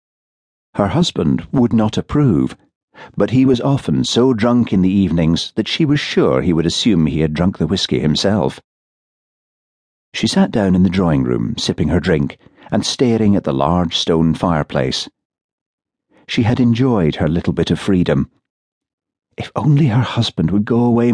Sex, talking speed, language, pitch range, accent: male, 165 wpm, English, 80-120 Hz, British